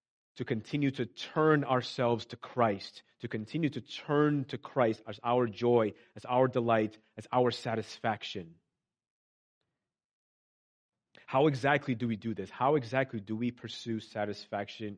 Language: English